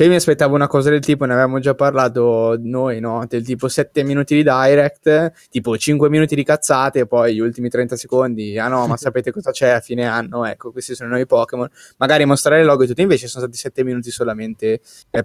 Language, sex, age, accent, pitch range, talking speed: Italian, male, 10-29, native, 120-140 Hz, 230 wpm